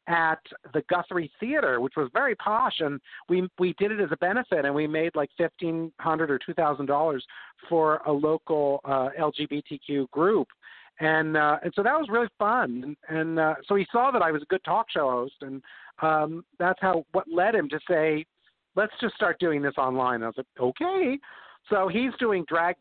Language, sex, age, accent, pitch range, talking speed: English, male, 50-69, American, 140-175 Hz, 205 wpm